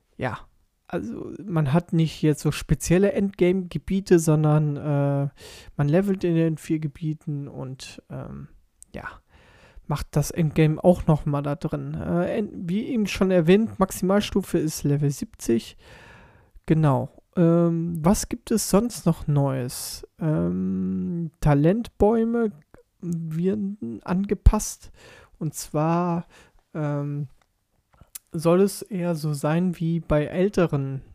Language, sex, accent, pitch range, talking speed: German, male, German, 145-175 Hz, 115 wpm